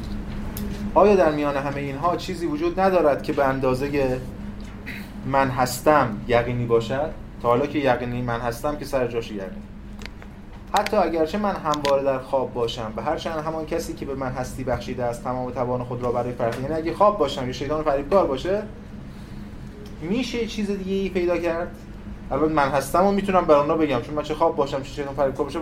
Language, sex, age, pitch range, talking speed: Persian, male, 30-49, 125-165 Hz, 185 wpm